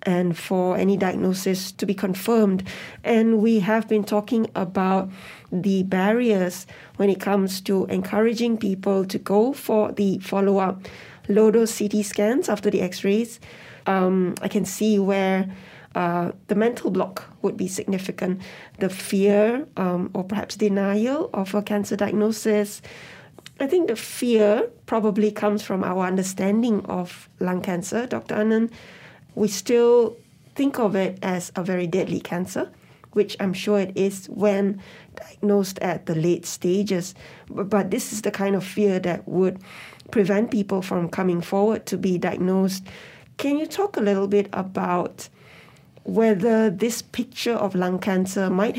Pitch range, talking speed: 190-215 Hz, 150 wpm